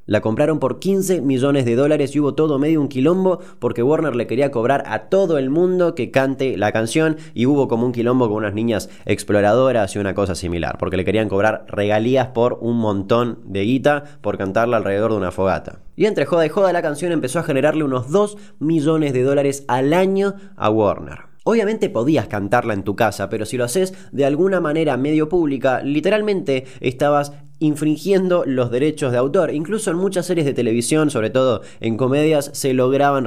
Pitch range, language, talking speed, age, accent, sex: 110-155 Hz, Spanish, 195 wpm, 20-39, Argentinian, male